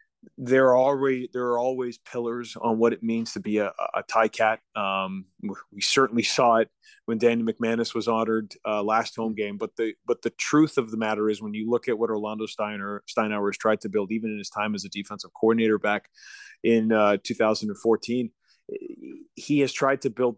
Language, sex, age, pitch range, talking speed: English, male, 30-49, 110-120 Hz, 205 wpm